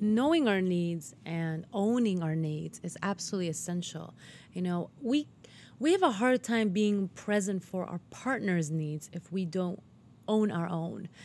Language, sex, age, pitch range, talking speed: English, female, 30-49, 180-220 Hz, 160 wpm